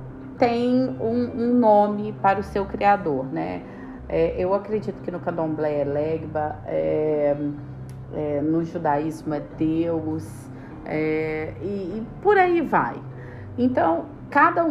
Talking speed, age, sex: 125 wpm, 40-59, female